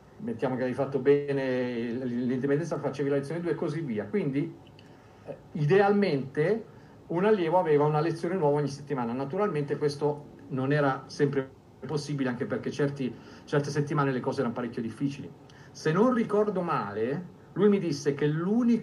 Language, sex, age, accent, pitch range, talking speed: Italian, male, 50-69, native, 130-155 Hz, 150 wpm